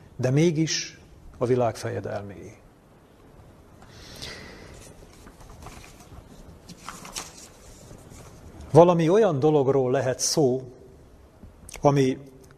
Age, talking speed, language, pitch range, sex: 40-59, 50 wpm, Hungarian, 120-145 Hz, male